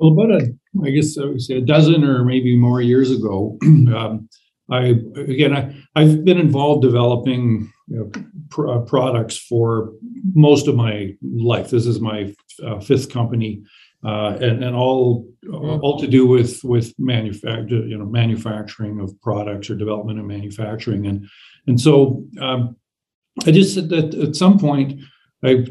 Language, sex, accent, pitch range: English, male, American, 115-145 Hz